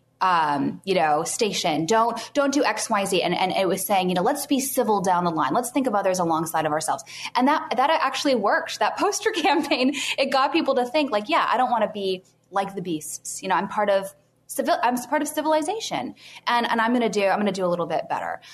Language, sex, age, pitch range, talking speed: English, female, 10-29, 175-235 Hz, 240 wpm